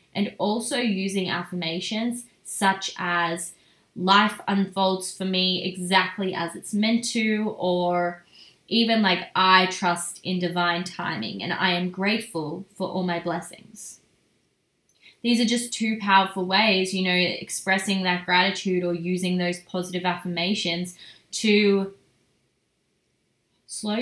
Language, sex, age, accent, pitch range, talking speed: English, female, 10-29, Australian, 180-215 Hz, 120 wpm